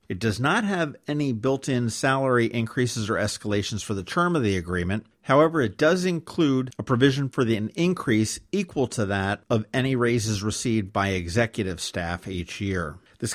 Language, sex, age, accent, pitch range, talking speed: English, male, 50-69, American, 105-130 Hz, 170 wpm